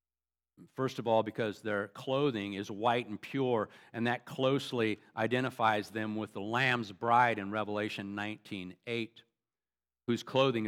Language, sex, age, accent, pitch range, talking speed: English, male, 50-69, American, 105-135 Hz, 135 wpm